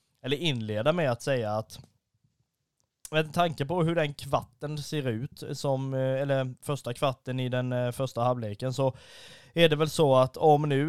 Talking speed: 165 wpm